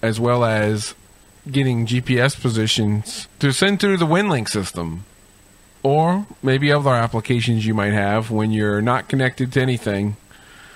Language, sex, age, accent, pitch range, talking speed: English, male, 40-59, American, 105-130 Hz, 140 wpm